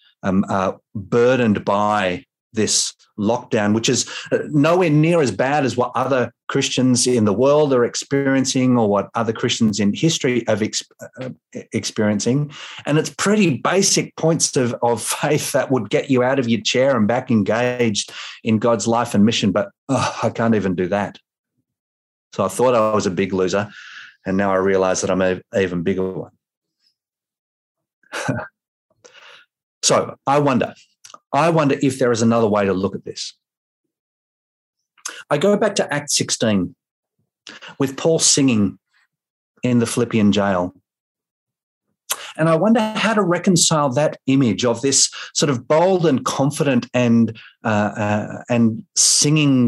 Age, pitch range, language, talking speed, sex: 30-49, 105-140 Hz, English, 150 wpm, male